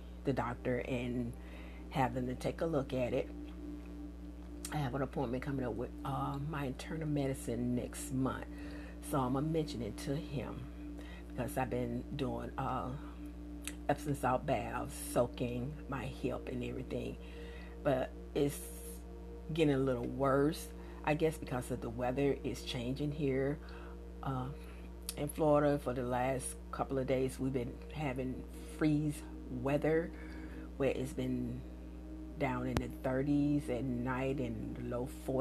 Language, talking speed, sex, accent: English, 145 wpm, female, American